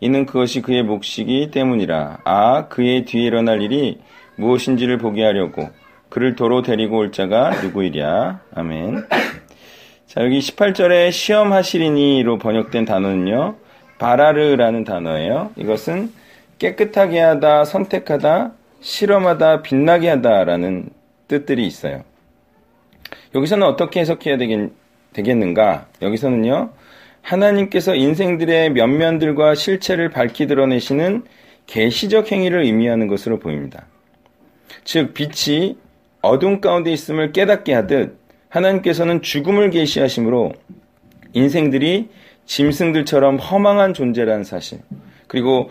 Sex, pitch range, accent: male, 120-180 Hz, native